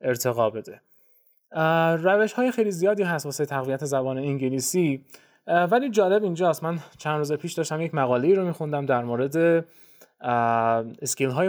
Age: 20-39